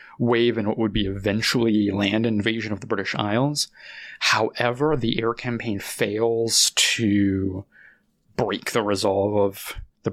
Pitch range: 105-125 Hz